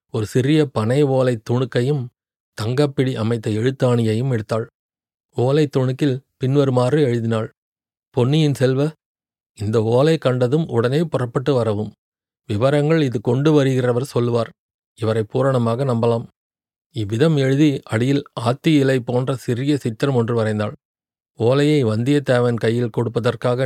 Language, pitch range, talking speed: Tamil, 115-140 Hz, 110 wpm